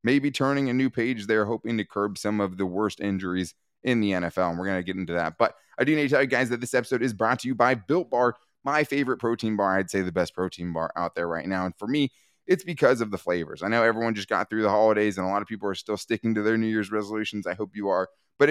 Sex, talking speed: male, 290 wpm